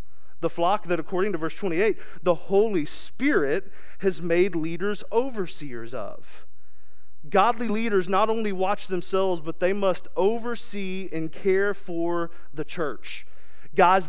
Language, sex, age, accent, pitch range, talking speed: English, male, 30-49, American, 160-200 Hz, 130 wpm